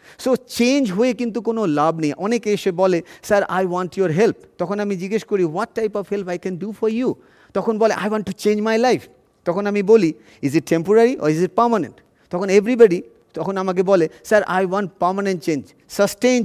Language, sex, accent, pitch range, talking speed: Bengali, male, native, 160-210 Hz, 210 wpm